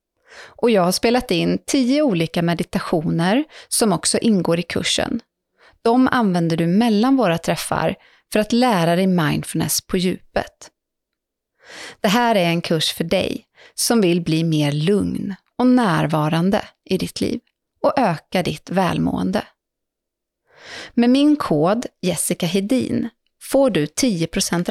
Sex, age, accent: female, 30-49, native